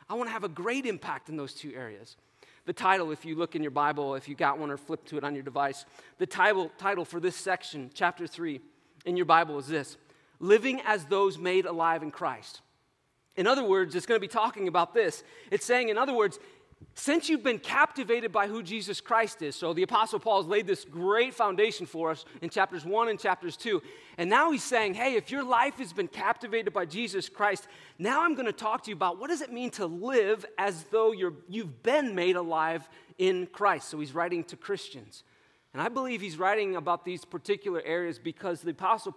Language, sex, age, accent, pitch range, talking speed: English, male, 40-59, American, 175-235 Hz, 220 wpm